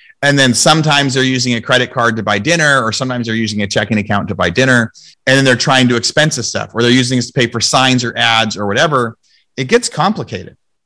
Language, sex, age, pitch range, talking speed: English, male, 30-49, 110-140 Hz, 245 wpm